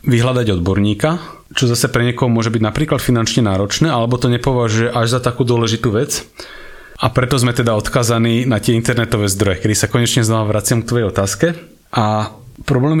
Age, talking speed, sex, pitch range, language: 30-49, 175 wpm, male, 110-130 Hz, Slovak